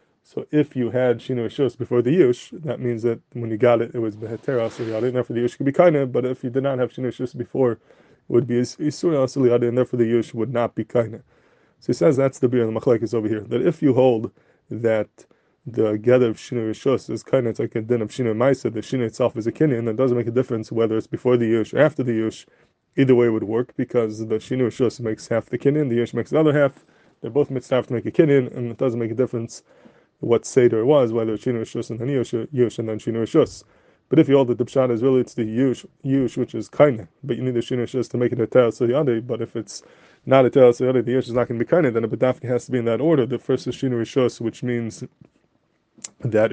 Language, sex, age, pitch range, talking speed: English, male, 20-39, 115-130 Hz, 255 wpm